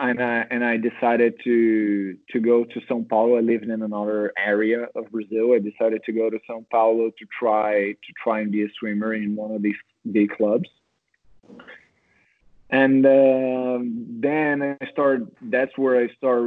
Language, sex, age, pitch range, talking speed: English, male, 20-39, 110-120 Hz, 175 wpm